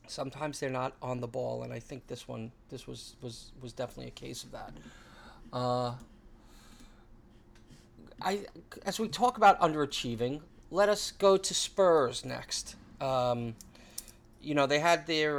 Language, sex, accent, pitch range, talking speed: English, male, American, 120-185 Hz, 150 wpm